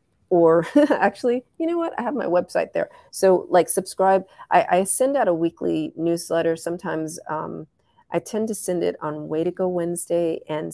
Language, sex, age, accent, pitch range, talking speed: English, female, 40-59, American, 155-175 Hz, 185 wpm